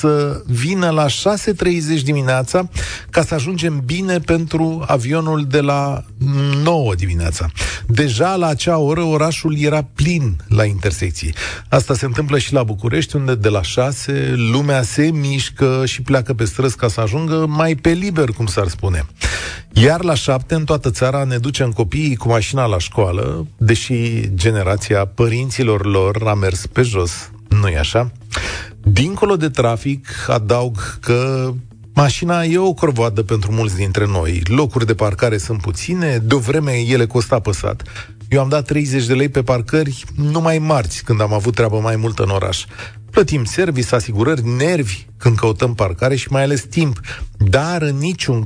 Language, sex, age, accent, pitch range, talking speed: Romanian, male, 40-59, native, 110-150 Hz, 160 wpm